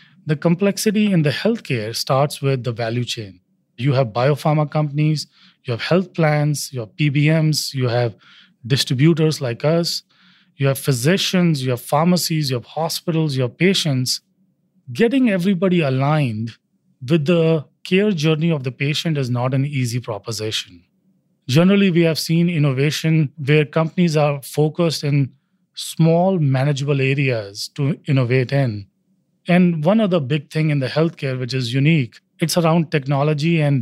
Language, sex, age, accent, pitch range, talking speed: English, male, 30-49, Indian, 130-170 Hz, 145 wpm